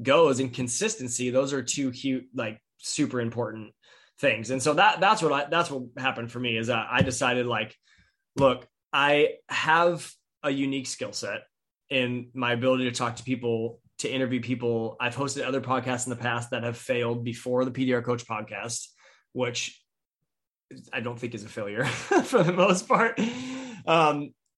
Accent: American